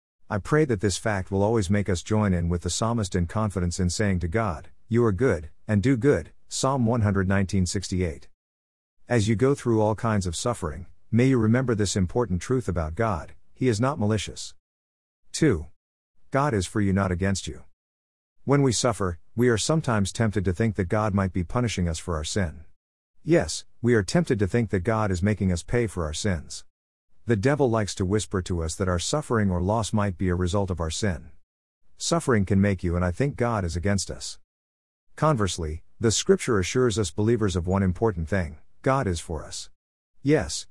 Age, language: 50-69, English